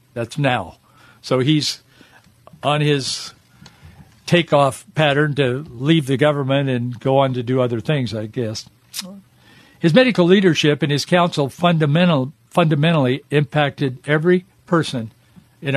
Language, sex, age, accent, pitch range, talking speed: English, male, 60-79, American, 130-170 Hz, 125 wpm